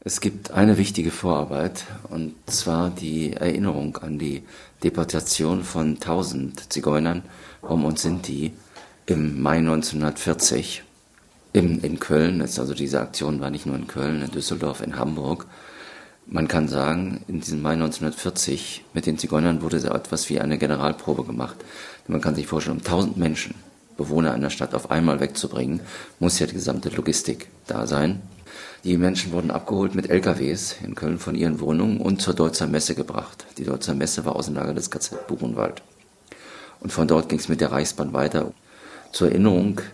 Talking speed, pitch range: 165 wpm, 75-85 Hz